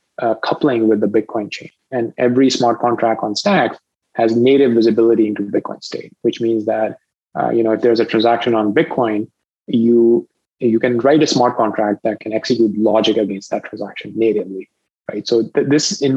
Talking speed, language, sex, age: 185 wpm, English, male, 20-39